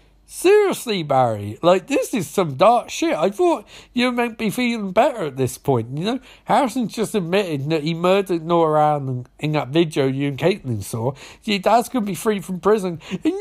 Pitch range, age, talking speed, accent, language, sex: 150-250 Hz, 50-69, 195 wpm, British, English, male